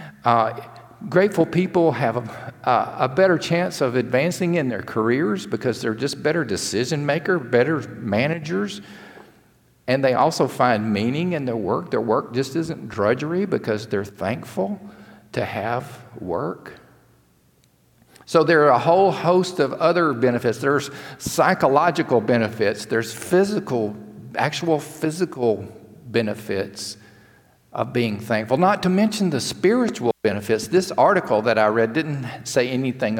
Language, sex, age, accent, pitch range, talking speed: English, male, 50-69, American, 110-160 Hz, 130 wpm